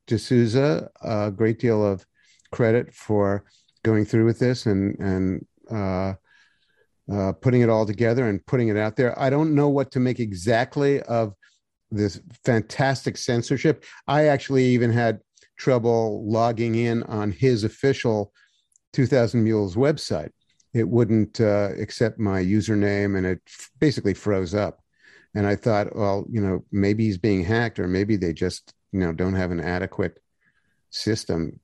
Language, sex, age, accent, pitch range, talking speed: English, male, 50-69, American, 100-125 Hz, 150 wpm